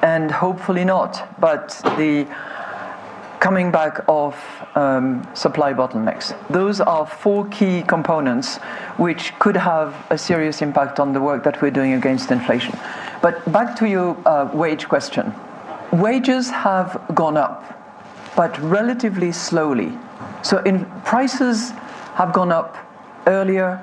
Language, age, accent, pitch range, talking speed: English, 50-69, French, 150-200 Hz, 130 wpm